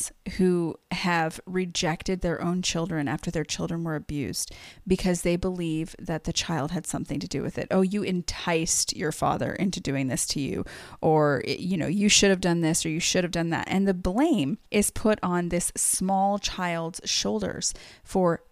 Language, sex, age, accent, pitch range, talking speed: English, female, 30-49, American, 165-200 Hz, 190 wpm